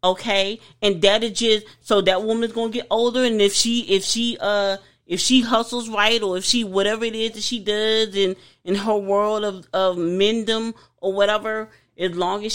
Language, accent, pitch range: English, American, 170-225 Hz